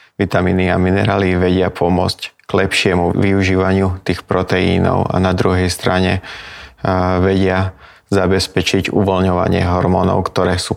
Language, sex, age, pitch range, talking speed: Slovak, male, 20-39, 95-100 Hz, 110 wpm